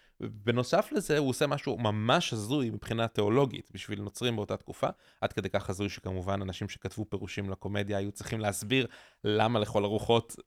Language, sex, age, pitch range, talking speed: Hebrew, male, 20-39, 100-130 Hz, 160 wpm